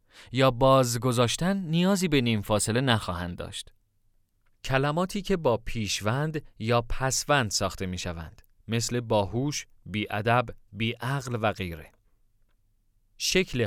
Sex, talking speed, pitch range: male, 110 wpm, 105-145 Hz